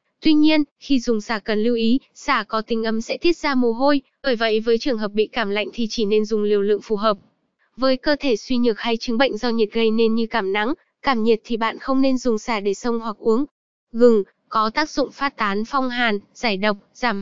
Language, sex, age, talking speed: Vietnamese, female, 10-29, 250 wpm